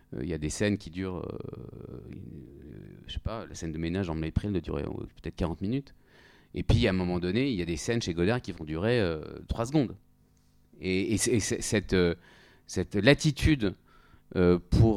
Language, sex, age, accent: French, male, 40-59, French